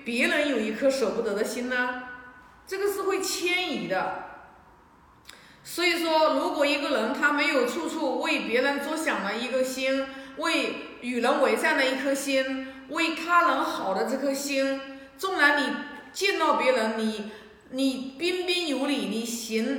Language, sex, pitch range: Chinese, female, 235-290 Hz